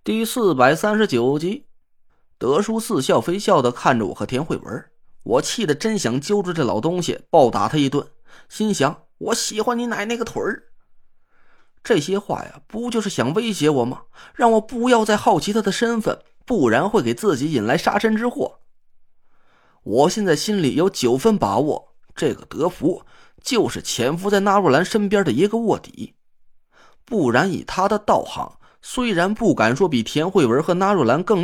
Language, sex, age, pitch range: Chinese, male, 20-39, 175-220 Hz